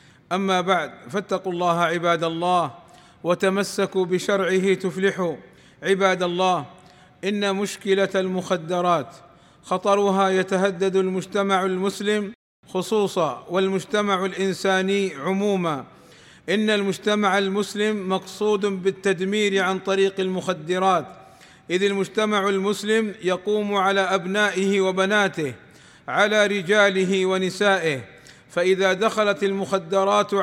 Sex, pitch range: male, 185-205 Hz